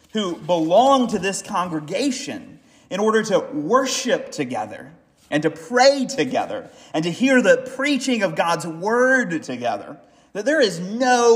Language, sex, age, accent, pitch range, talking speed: English, male, 30-49, American, 185-265 Hz, 145 wpm